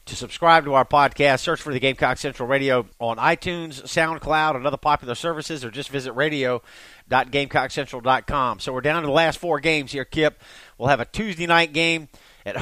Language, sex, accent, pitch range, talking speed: English, male, American, 135-165 Hz, 185 wpm